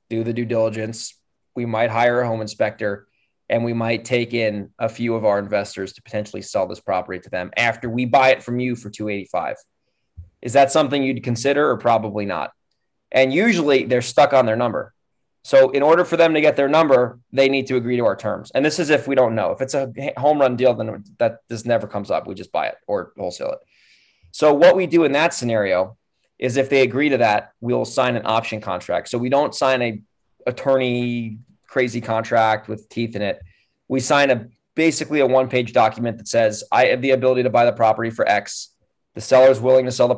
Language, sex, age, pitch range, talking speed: English, male, 20-39, 110-130 Hz, 225 wpm